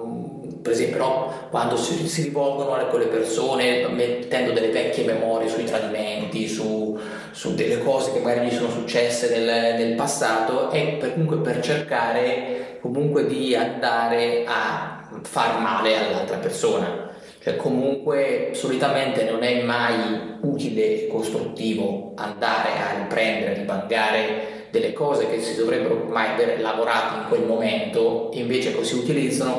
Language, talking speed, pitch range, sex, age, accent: Italian, 145 wpm, 115-170 Hz, male, 20-39, native